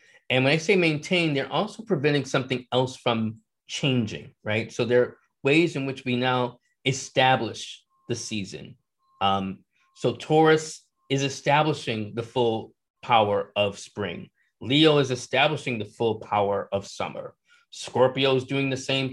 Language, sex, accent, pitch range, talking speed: English, male, American, 115-150 Hz, 145 wpm